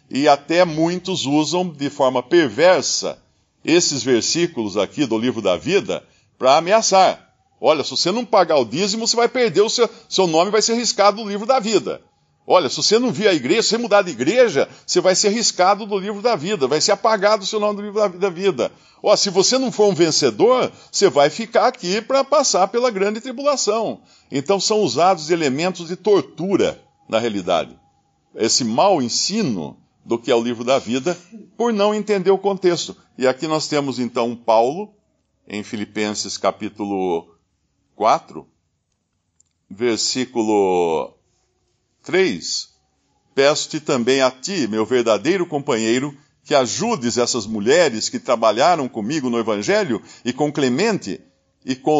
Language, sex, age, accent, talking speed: Portuguese, male, 60-79, Brazilian, 160 wpm